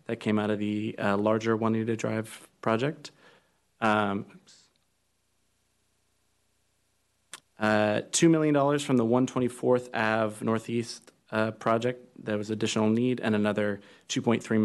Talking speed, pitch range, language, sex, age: 120 wpm, 100-120 Hz, English, male, 30-49